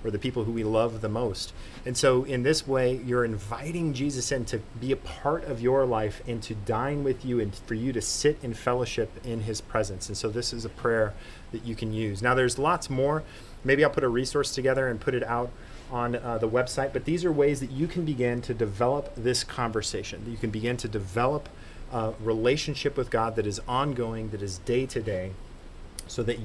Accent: American